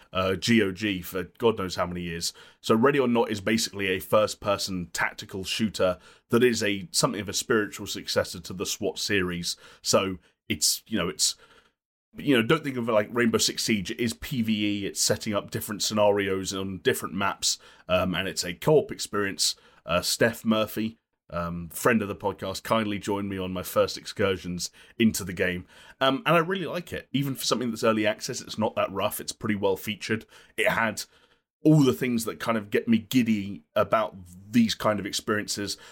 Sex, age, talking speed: male, 30-49, 195 wpm